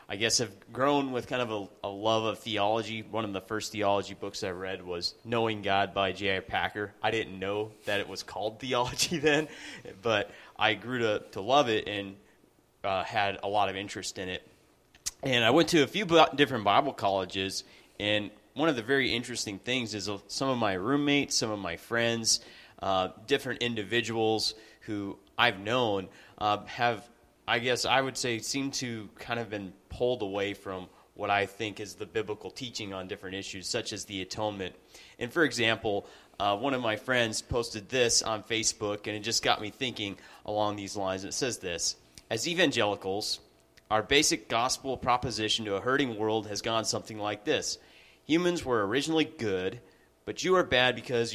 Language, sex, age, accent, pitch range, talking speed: English, male, 30-49, American, 100-125 Hz, 190 wpm